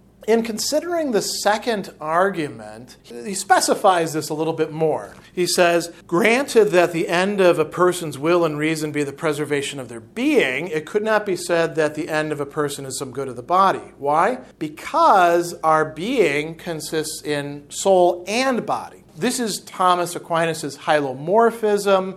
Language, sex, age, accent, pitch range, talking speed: English, male, 40-59, American, 150-195 Hz, 165 wpm